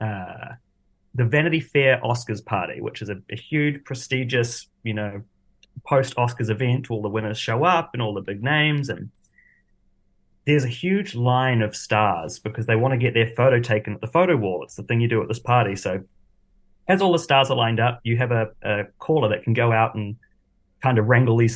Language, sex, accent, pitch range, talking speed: English, male, Australian, 110-140 Hz, 210 wpm